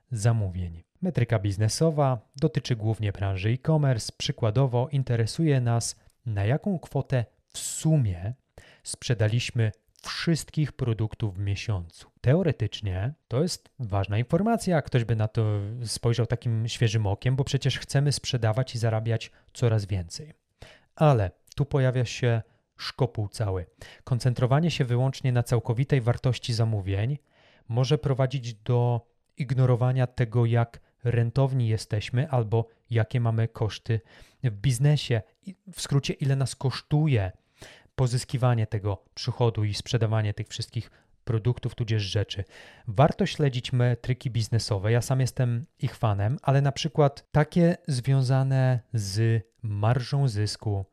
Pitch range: 110-135 Hz